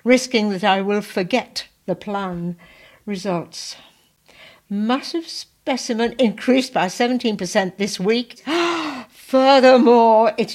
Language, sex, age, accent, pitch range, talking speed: English, female, 60-79, British, 175-230 Hz, 95 wpm